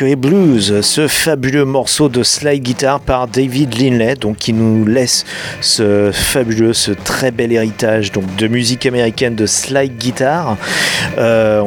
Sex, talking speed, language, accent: male, 145 wpm, French, French